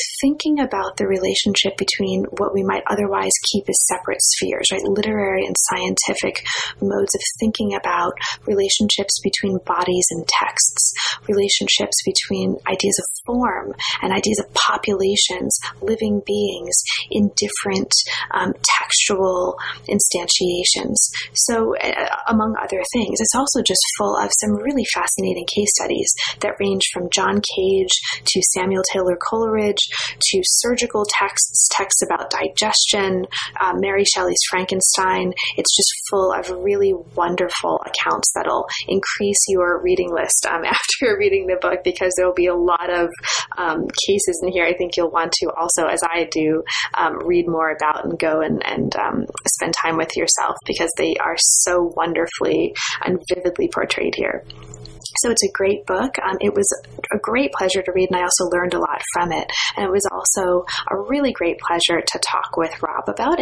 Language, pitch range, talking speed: English, 180-215 Hz, 160 wpm